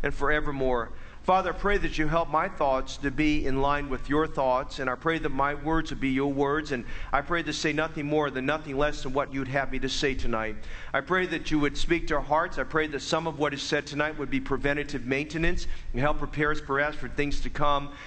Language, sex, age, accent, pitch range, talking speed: English, male, 40-59, American, 140-170 Hz, 250 wpm